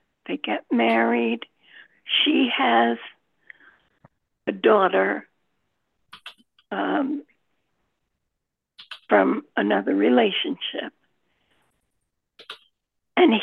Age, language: 60-79, English